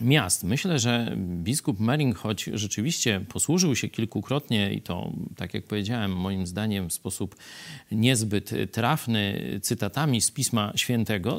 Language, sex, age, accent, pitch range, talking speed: Polish, male, 40-59, native, 105-175 Hz, 130 wpm